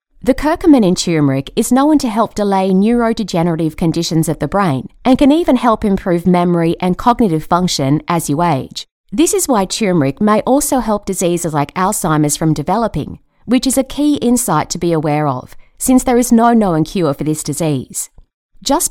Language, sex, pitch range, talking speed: English, female, 160-240 Hz, 180 wpm